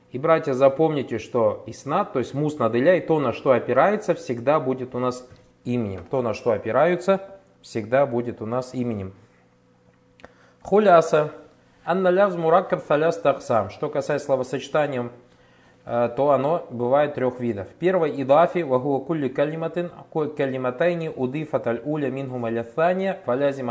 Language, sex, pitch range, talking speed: Russian, male, 115-160 Hz, 130 wpm